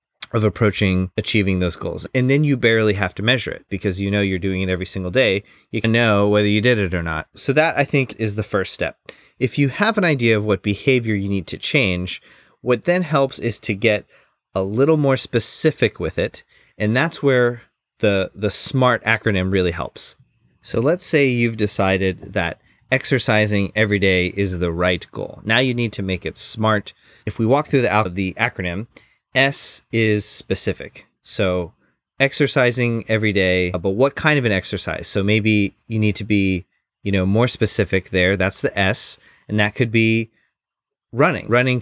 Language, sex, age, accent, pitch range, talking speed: English, male, 30-49, American, 95-120 Hz, 190 wpm